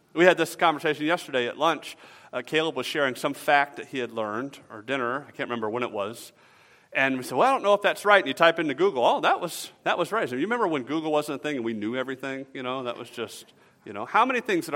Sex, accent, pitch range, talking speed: male, American, 130-185 Hz, 280 wpm